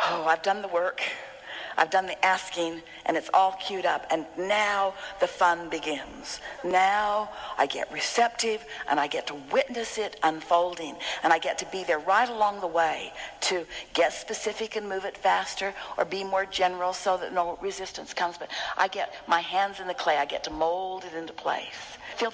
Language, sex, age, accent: English, female, 60-79, American